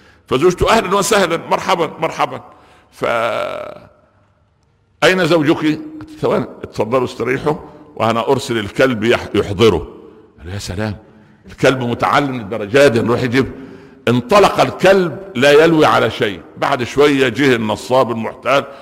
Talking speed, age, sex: 105 wpm, 60-79, male